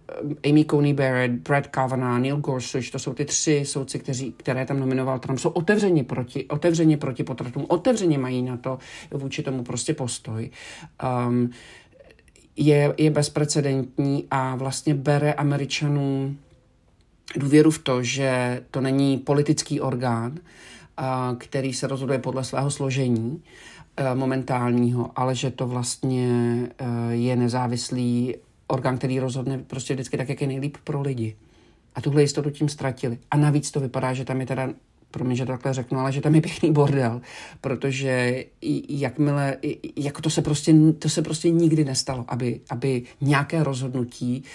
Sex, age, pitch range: male, 50-69, 130-155 Hz